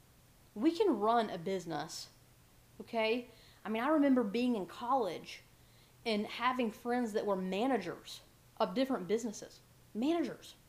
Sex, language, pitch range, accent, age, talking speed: female, English, 190-240 Hz, American, 30-49, 130 wpm